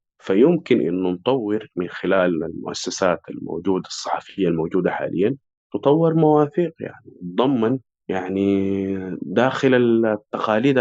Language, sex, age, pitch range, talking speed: Arabic, male, 30-49, 90-115 Hz, 95 wpm